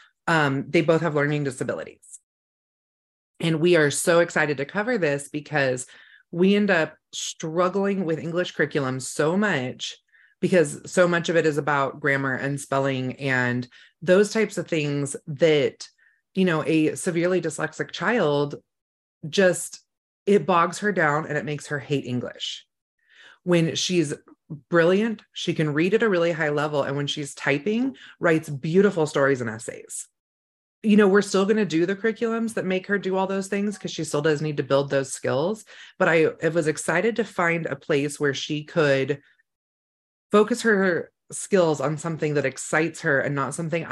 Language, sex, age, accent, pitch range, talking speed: English, female, 30-49, American, 145-185 Hz, 170 wpm